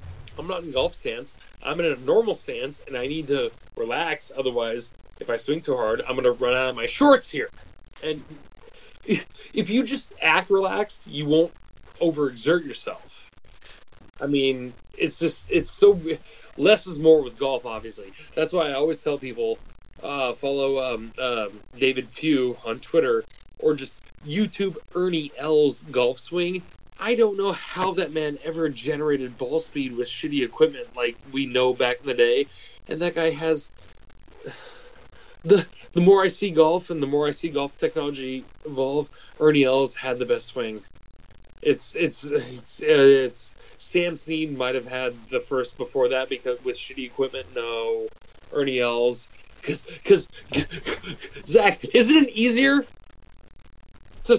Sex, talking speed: male, 160 wpm